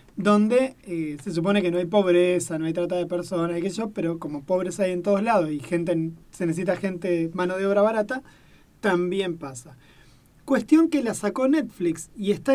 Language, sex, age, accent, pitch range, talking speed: Spanish, male, 20-39, Argentinian, 160-205 Hz, 185 wpm